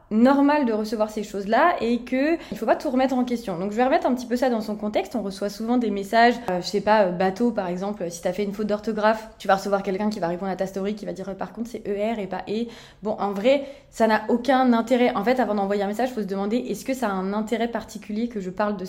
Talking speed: 290 wpm